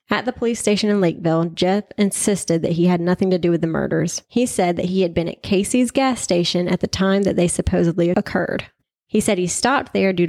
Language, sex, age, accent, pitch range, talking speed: English, female, 30-49, American, 175-210 Hz, 235 wpm